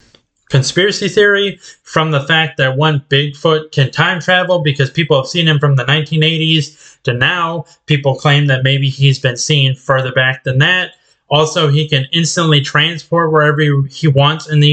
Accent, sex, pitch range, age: American, male, 140-170 Hz, 20-39